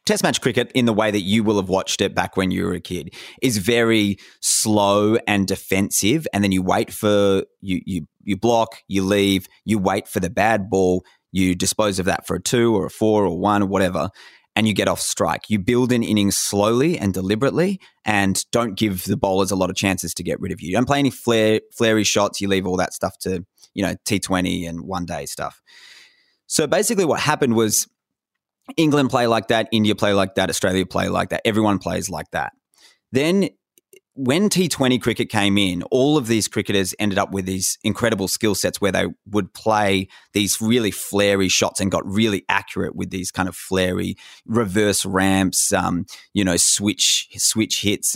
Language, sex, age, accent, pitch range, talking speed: English, male, 20-39, Australian, 95-115 Hz, 205 wpm